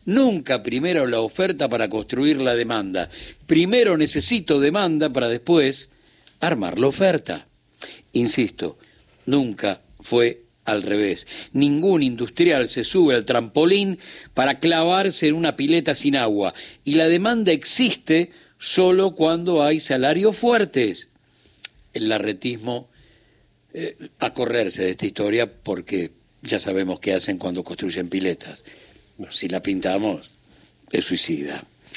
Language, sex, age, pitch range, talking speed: Spanish, male, 60-79, 120-170 Hz, 120 wpm